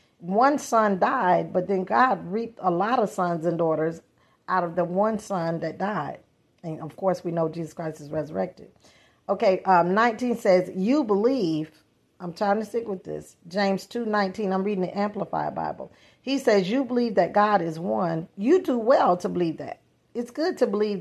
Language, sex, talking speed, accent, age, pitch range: English, female, 190 wpm, American, 40-59, 180-225 Hz